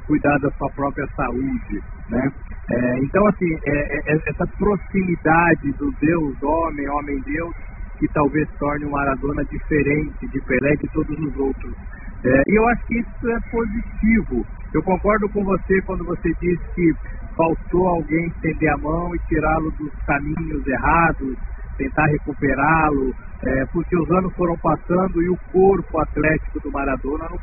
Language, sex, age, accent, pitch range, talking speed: Portuguese, male, 50-69, Brazilian, 140-170 Hz, 150 wpm